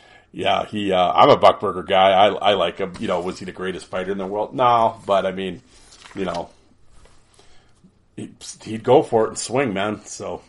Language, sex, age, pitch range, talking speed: English, male, 40-59, 95-115 Hz, 205 wpm